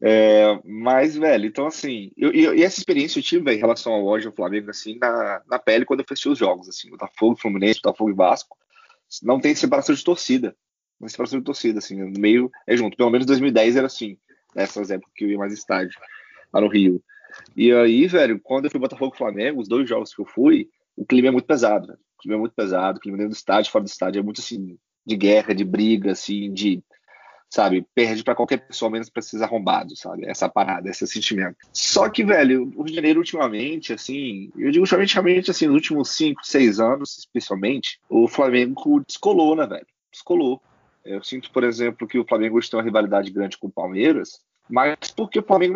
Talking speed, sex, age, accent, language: 210 wpm, male, 30-49, Brazilian, Portuguese